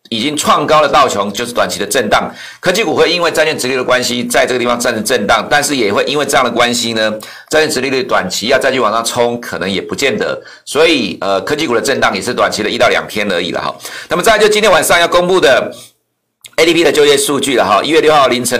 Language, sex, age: Chinese, male, 50-69